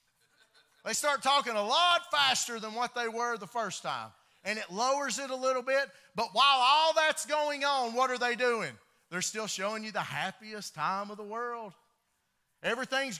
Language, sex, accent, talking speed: English, male, American, 185 wpm